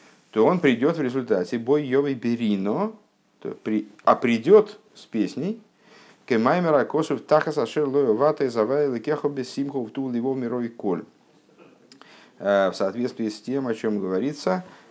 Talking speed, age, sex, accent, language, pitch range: 70 wpm, 50-69, male, native, Russian, 105-145 Hz